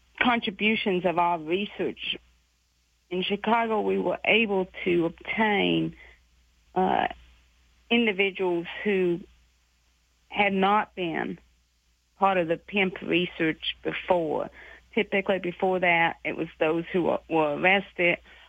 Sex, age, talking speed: female, 50-69, 105 wpm